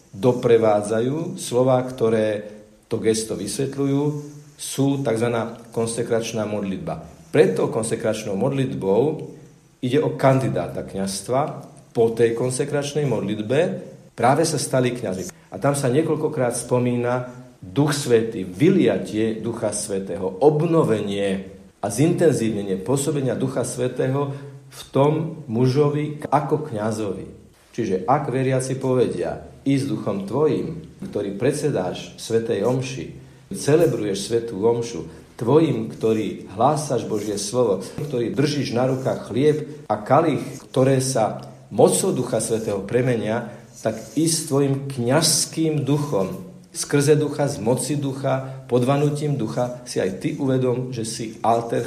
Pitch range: 110-140 Hz